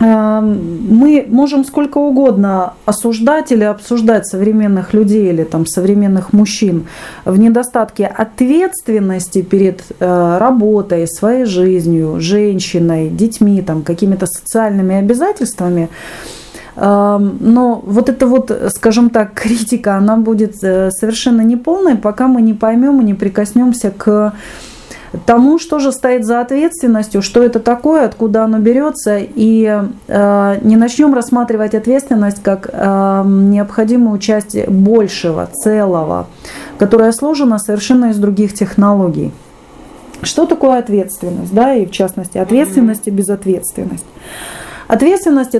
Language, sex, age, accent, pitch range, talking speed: Russian, female, 30-49, native, 195-240 Hz, 110 wpm